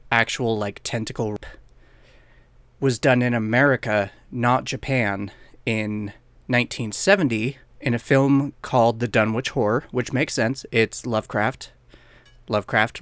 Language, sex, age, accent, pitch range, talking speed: English, male, 30-49, American, 110-130 Hz, 110 wpm